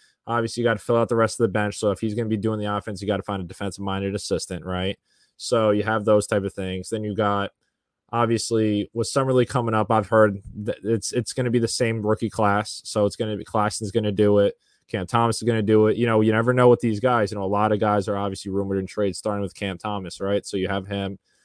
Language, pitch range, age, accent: English, 100-115 Hz, 20-39, American